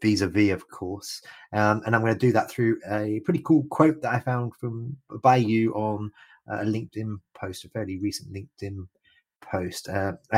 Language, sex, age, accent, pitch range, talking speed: English, male, 30-49, British, 100-130 Hz, 180 wpm